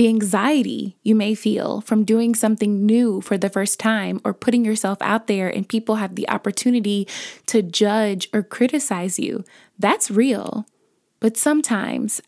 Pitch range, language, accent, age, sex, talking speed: 210-235 Hz, English, American, 20-39, female, 155 wpm